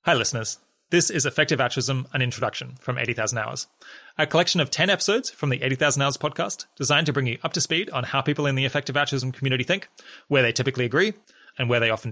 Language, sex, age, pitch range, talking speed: English, male, 20-39, 115-150 Hz, 225 wpm